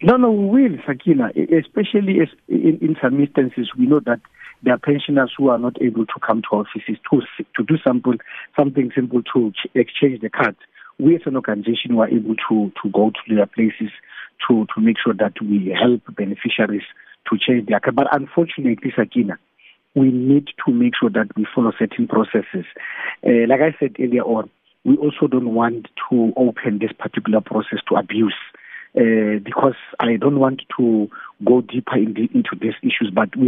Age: 50-69